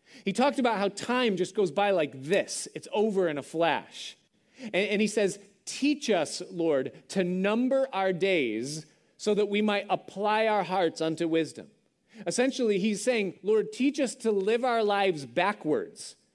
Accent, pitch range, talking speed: American, 150-220 Hz, 170 wpm